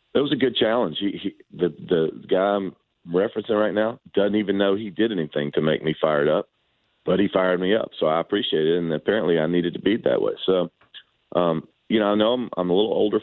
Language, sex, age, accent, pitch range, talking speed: English, male, 40-59, American, 85-105 Hz, 240 wpm